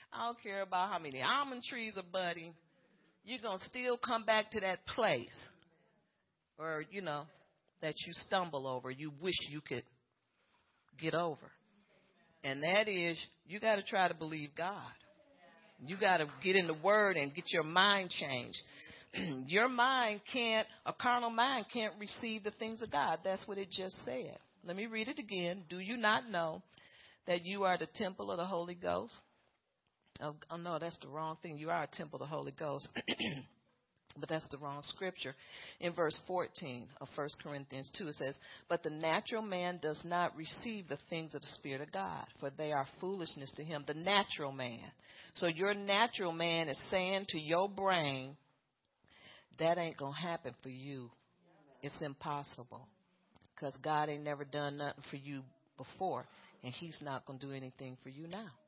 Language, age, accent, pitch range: English, 40-59, American, 145-195 Hz